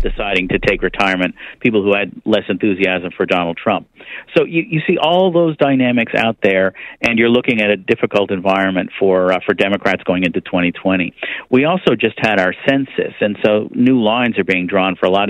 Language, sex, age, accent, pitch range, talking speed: English, male, 50-69, American, 95-115 Hz, 200 wpm